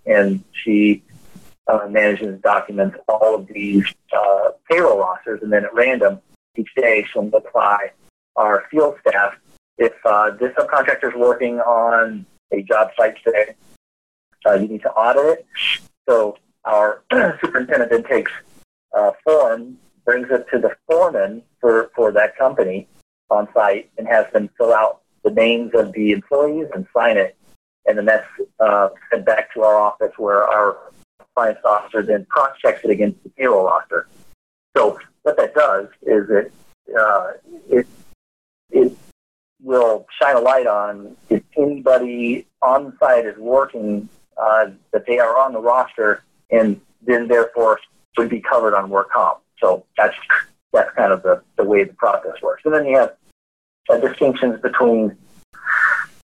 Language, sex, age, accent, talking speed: English, male, 40-59, American, 155 wpm